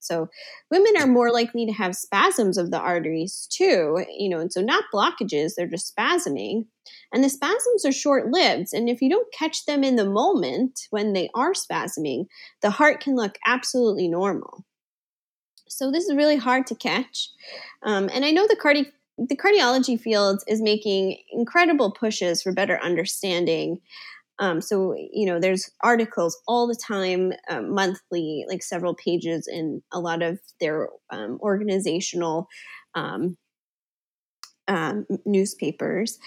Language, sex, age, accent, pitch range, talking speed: English, female, 20-39, American, 185-265 Hz, 150 wpm